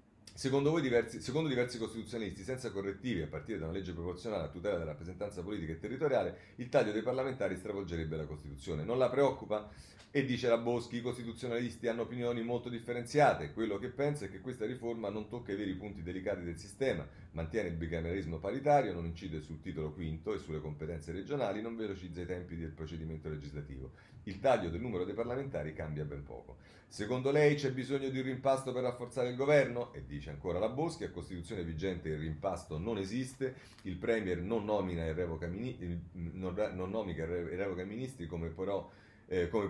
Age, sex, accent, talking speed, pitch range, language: 40-59, male, native, 175 wpm, 85-120 Hz, Italian